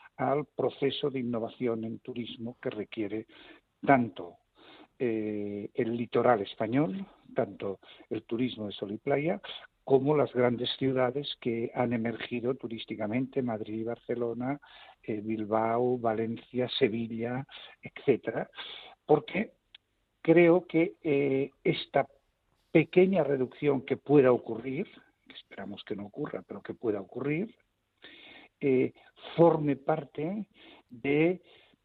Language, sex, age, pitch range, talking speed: Spanish, male, 60-79, 115-145 Hz, 110 wpm